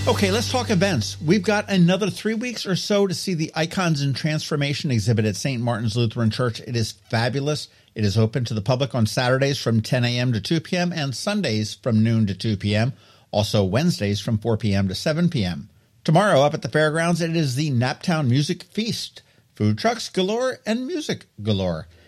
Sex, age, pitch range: male, 50-69, 115-165 Hz